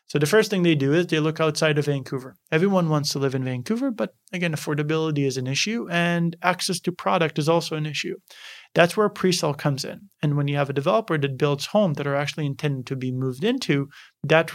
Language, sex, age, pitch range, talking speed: English, male, 30-49, 140-170 Hz, 225 wpm